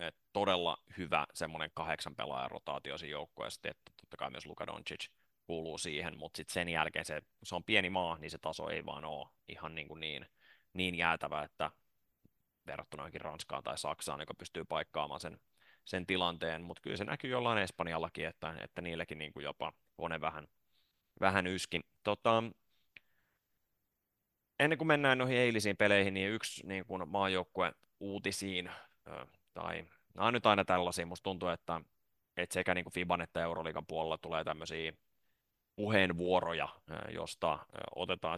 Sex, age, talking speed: male, 30-49, 155 wpm